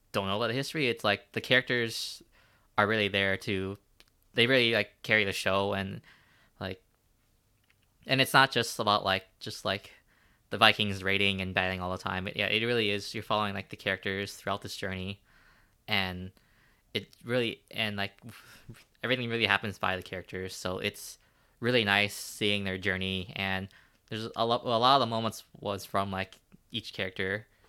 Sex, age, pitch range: male, 20-39, 95-115 Hz